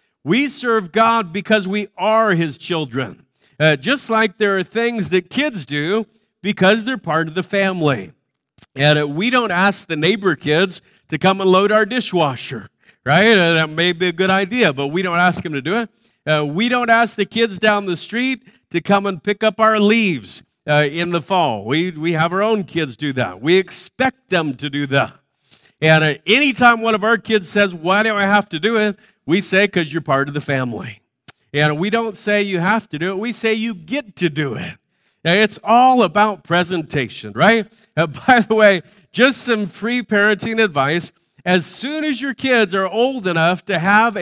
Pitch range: 160-220 Hz